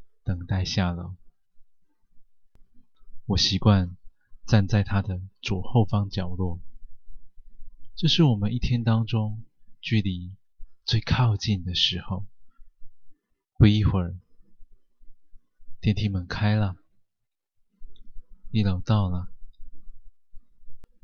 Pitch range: 95-115 Hz